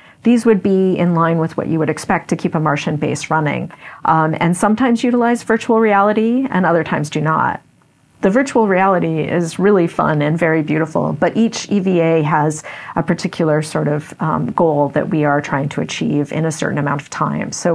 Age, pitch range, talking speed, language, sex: 40-59, 155-190 Hz, 200 wpm, English, female